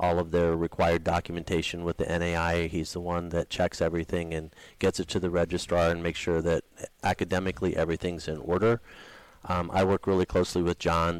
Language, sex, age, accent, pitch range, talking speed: English, male, 40-59, American, 85-90 Hz, 190 wpm